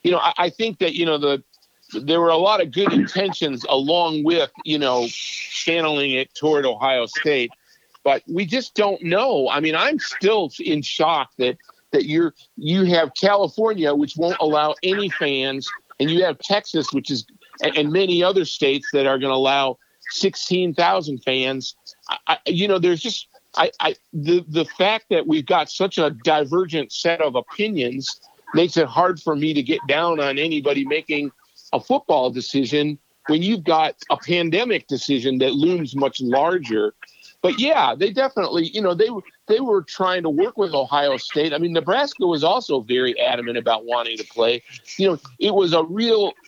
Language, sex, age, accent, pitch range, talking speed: English, male, 50-69, American, 140-190 Hz, 185 wpm